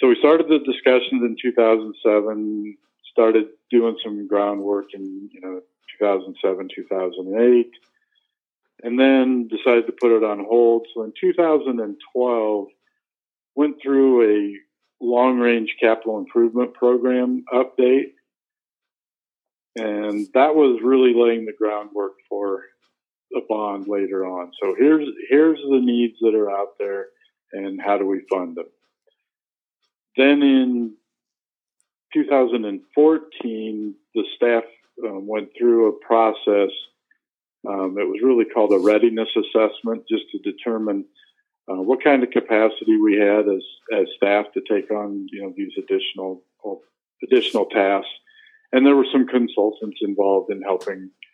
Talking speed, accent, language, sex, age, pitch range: 125 wpm, American, English, male, 50-69, 105-135 Hz